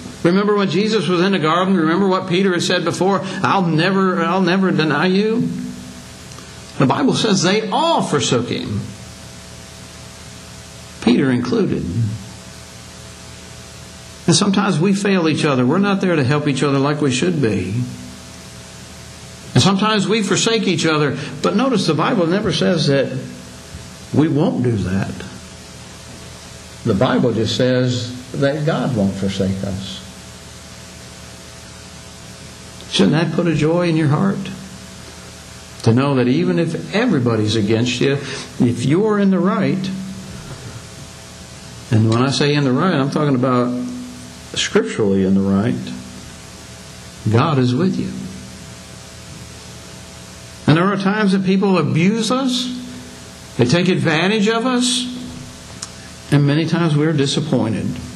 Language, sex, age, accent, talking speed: English, male, 60-79, American, 135 wpm